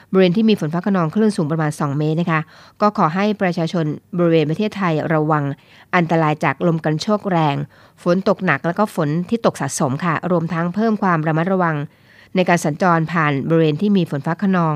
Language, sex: Thai, female